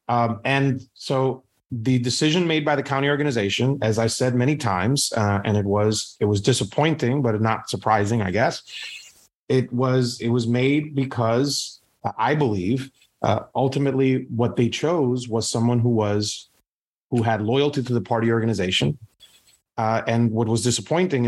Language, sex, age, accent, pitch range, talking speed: English, male, 30-49, American, 110-130 Hz, 160 wpm